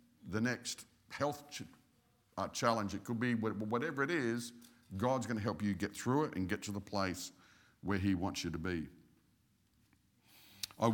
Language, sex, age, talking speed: English, male, 50-69, 170 wpm